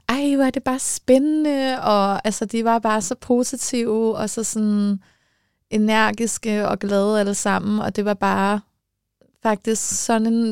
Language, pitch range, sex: Danish, 185-210 Hz, female